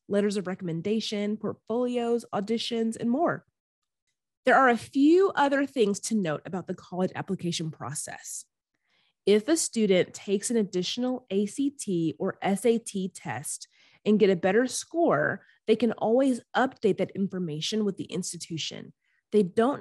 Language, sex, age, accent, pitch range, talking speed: English, female, 30-49, American, 180-235 Hz, 140 wpm